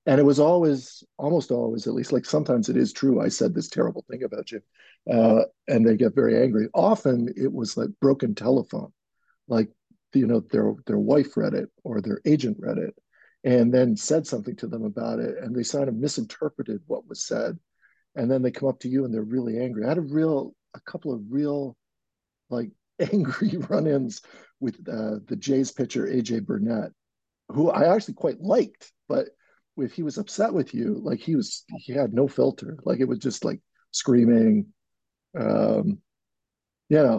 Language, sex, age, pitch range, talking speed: English, male, 50-69, 125-200 Hz, 190 wpm